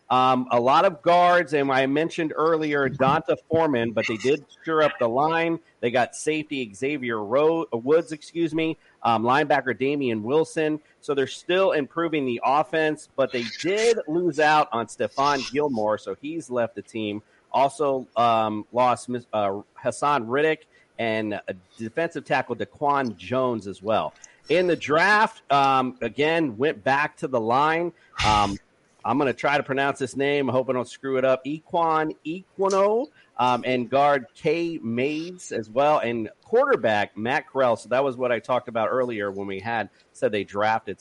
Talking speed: 170 wpm